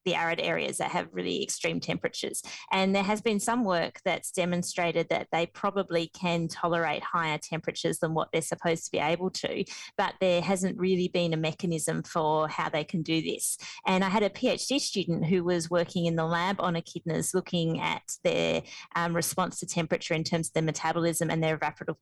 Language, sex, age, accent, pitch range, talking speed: English, female, 30-49, Australian, 165-185 Hz, 200 wpm